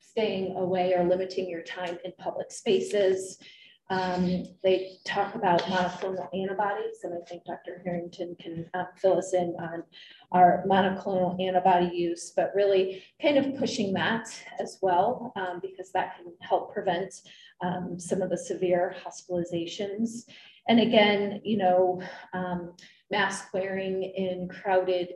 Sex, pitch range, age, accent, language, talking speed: female, 180-205 Hz, 30-49, American, English, 140 wpm